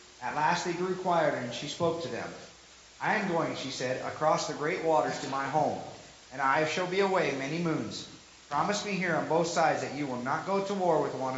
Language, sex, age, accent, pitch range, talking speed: English, male, 40-59, American, 135-170 Hz, 230 wpm